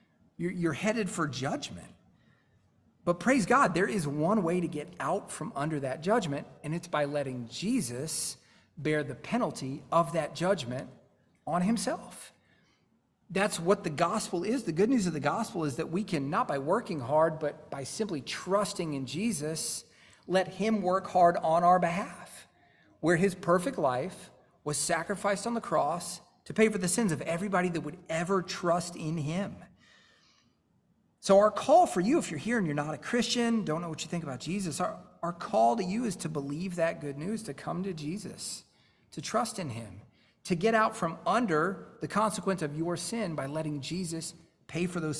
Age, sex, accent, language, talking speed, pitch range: 40-59, male, American, English, 185 wpm, 150-200 Hz